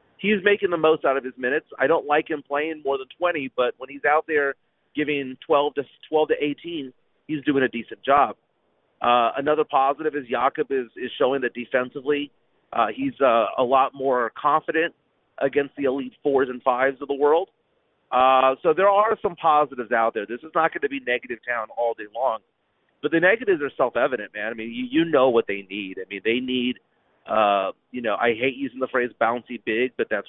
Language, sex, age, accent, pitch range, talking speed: English, male, 40-59, American, 120-145 Hz, 210 wpm